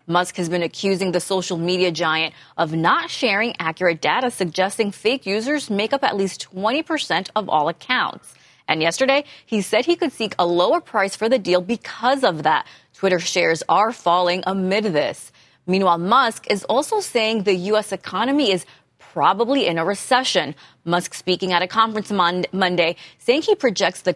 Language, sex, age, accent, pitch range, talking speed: English, female, 20-39, American, 175-235 Hz, 175 wpm